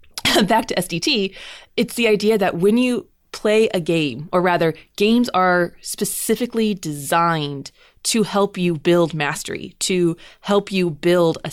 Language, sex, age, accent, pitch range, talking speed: English, female, 20-39, American, 170-210 Hz, 145 wpm